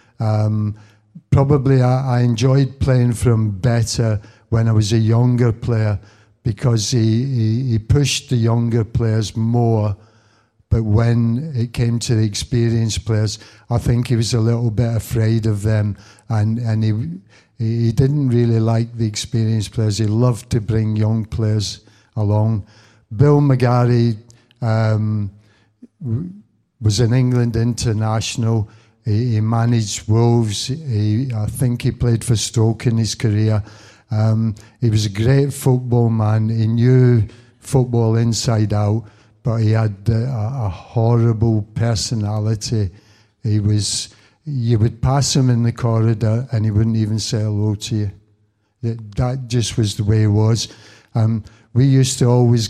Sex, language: male, English